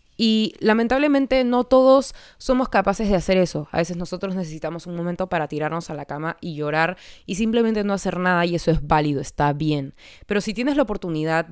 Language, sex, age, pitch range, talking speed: Spanish, female, 20-39, 165-195 Hz, 200 wpm